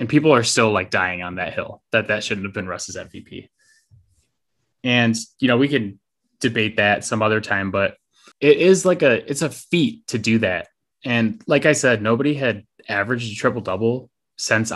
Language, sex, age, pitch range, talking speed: English, male, 10-29, 105-135 Hz, 195 wpm